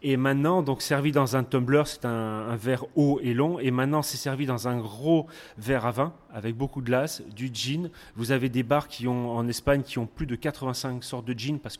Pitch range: 120-140 Hz